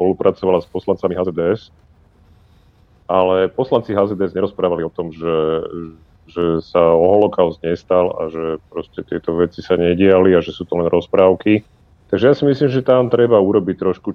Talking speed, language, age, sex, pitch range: 160 wpm, Slovak, 40-59, male, 90-105 Hz